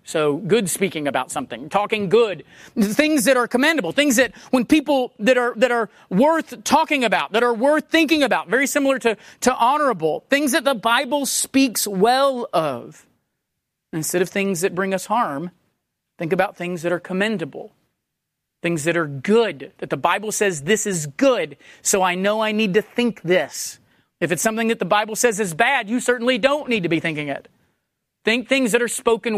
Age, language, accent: 40-59, English, American